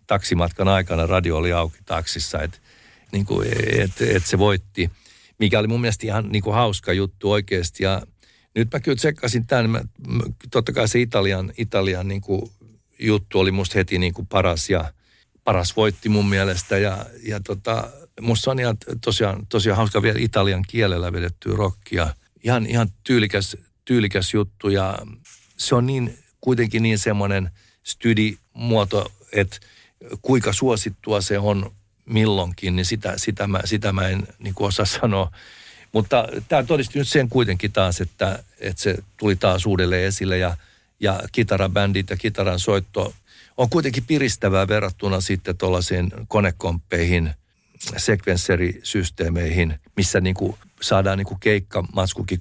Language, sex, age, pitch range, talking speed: Finnish, male, 60-79, 95-110 Hz, 140 wpm